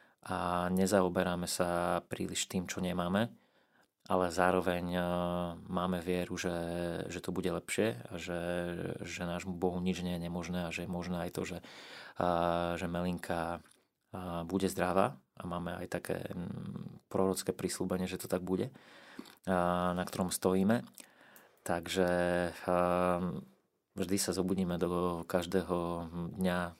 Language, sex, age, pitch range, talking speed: Slovak, male, 30-49, 85-95 Hz, 125 wpm